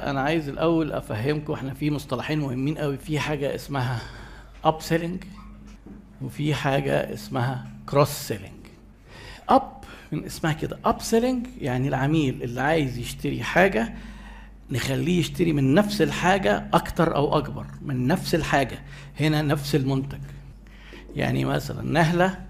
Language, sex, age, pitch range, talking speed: Arabic, male, 50-69, 130-165 Hz, 125 wpm